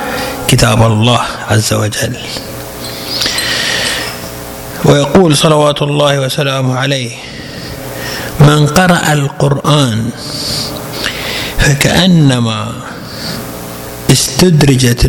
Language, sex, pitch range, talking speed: Arabic, male, 130-180 Hz, 55 wpm